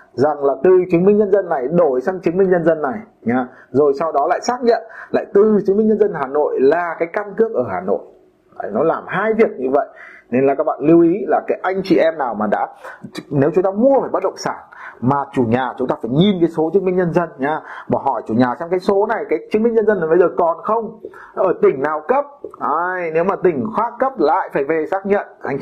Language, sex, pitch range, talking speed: Vietnamese, male, 155-225 Hz, 260 wpm